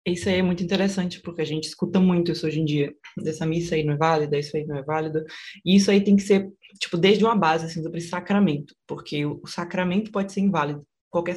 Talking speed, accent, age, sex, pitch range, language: 240 wpm, Brazilian, 20-39, female, 150-180 Hz, Portuguese